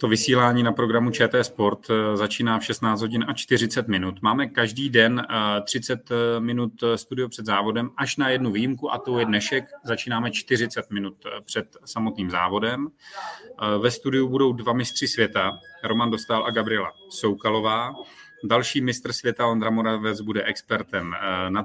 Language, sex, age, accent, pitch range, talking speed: Czech, male, 30-49, native, 105-120 Hz, 150 wpm